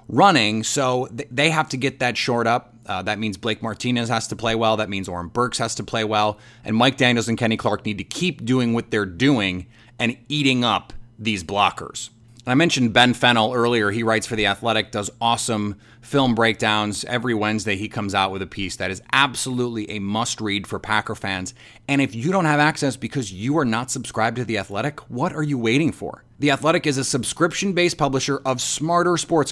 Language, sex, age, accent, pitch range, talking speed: English, male, 30-49, American, 110-135 Hz, 215 wpm